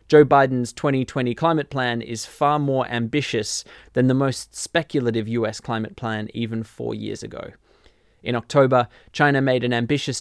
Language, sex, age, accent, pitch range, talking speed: English, male, 20-39, Australian, 115-140 Hz, 155 wpm